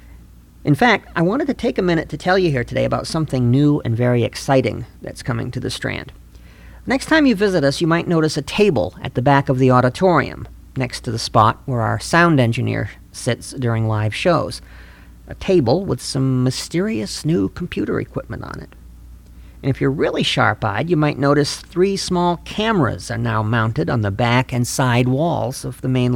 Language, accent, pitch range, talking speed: English, American, 120-170 Hz, 195 wpm